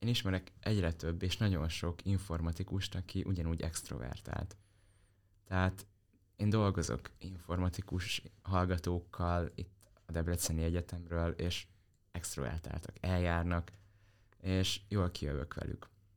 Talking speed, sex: 100 wpm, male